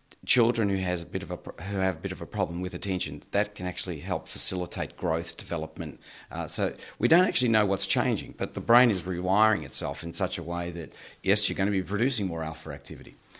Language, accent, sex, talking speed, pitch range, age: English, Australian, male, 230 wpm, 85-100 Hz, 40-59